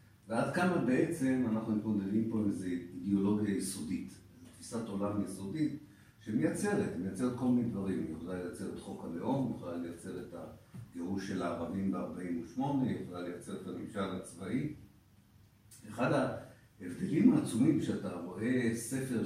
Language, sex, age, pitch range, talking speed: Hebrew, male, 50-69, 95-115 Hz, 135 wpm